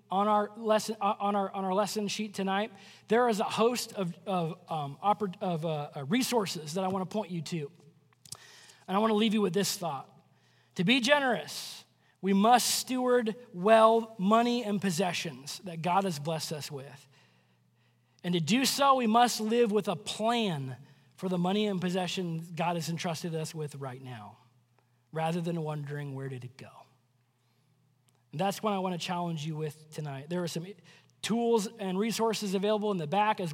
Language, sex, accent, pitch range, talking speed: English, male, American, 165-215 Hz, 185 wpm